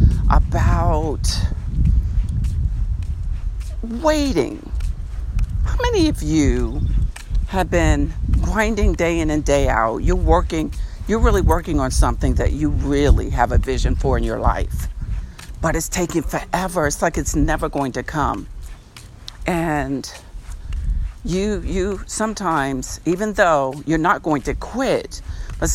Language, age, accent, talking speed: English, 50-69, American, 125 wpm